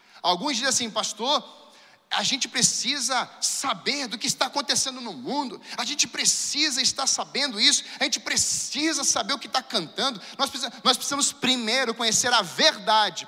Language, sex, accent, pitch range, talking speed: Portuguese, male, Brazilian, 210-260 Hz, 160 wpm